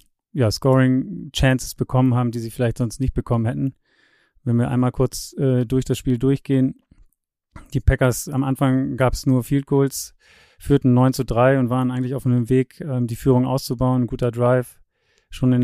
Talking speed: 175 wpm